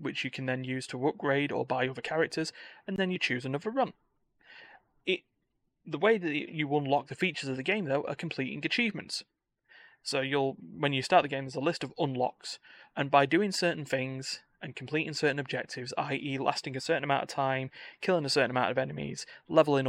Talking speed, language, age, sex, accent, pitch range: 200 wpm, English, 20-39, male, British, 130-155 Hz